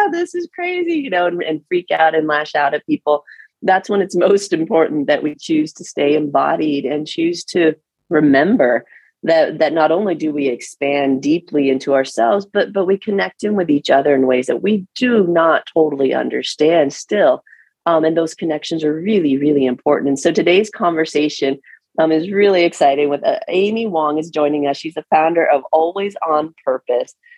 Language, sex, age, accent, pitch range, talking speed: English, female, 30-49, American, 150-200 Hz, 190 wpm